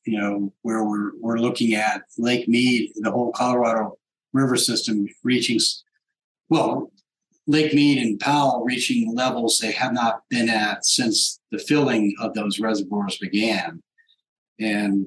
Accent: American